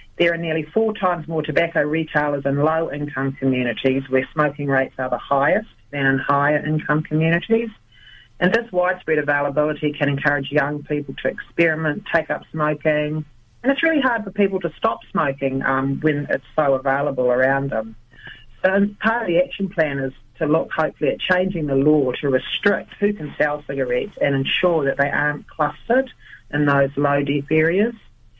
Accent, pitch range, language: Australian, 140-190 Hz, English